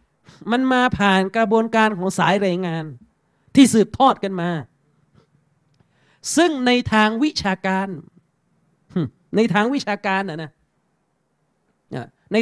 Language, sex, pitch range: Thai, male, 175-235 Hz